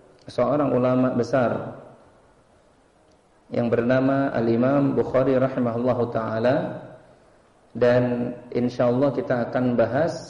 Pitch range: 120-140 Hz